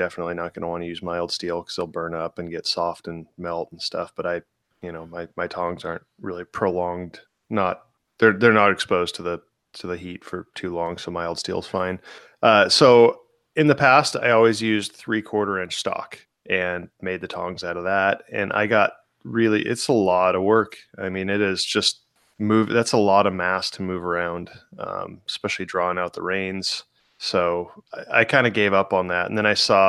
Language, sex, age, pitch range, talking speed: English, male, 20-39, 90-105 Hz, 215 wpm